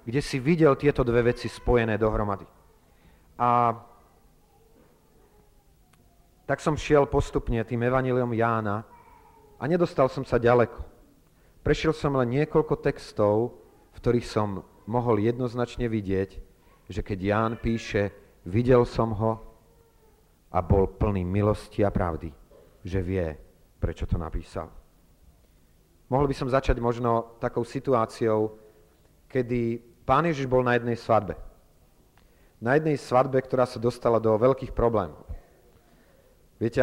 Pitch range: 100-135 Hz